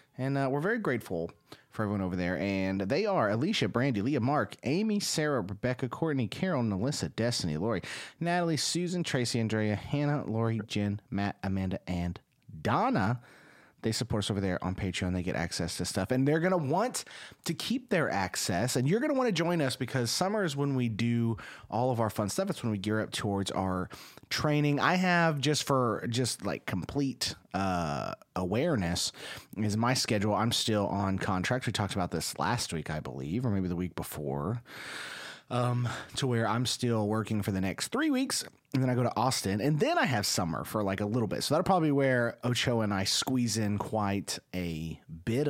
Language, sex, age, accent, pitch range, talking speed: English, male, 30-49, American, 95-135 Hz, 200 wpm